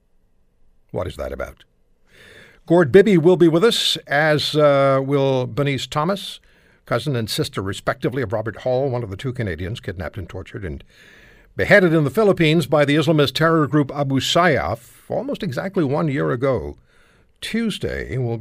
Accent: American